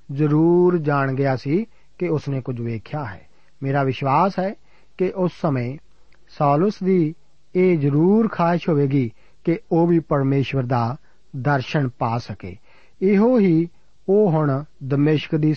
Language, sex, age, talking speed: Punjabi, male, 50-69, 135 wpm